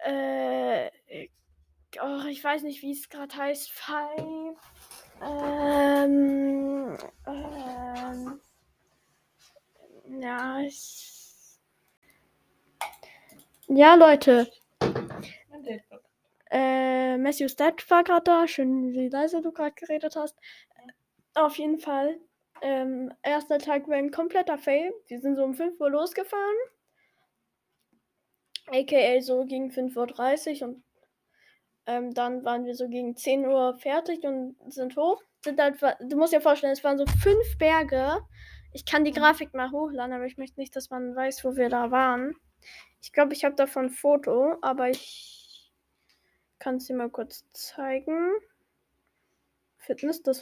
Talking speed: 125 wpm